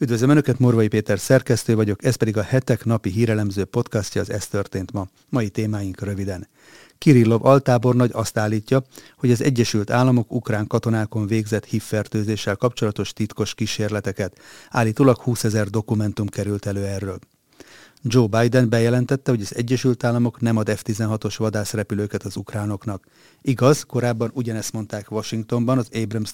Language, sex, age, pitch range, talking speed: Hungarian, male, 40-59, 105-120 Hz, 140 wpm